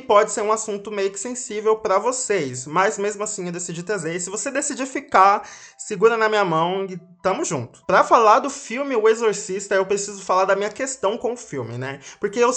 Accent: Brazilian